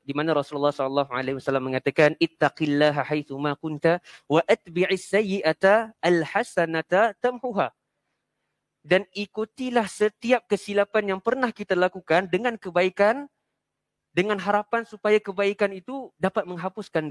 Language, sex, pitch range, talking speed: Malay, male, 150-200 Hz, 100 wpm